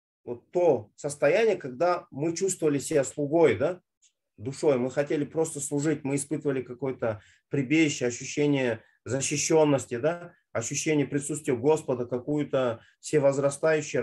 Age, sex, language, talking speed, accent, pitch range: 30-49, male, Russian, 110 wpm, native, 130-170 Hz